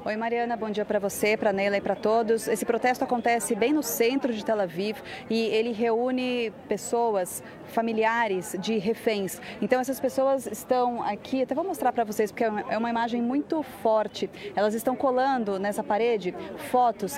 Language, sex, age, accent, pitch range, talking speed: Portuguese, female, 30-49, Brazilian, 210-250 Hz, 170 wpm